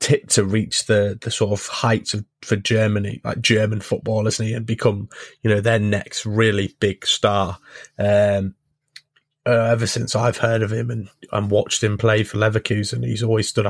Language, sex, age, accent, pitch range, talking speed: English, male, 20-39, British, 100-115 Hz, 190 wpm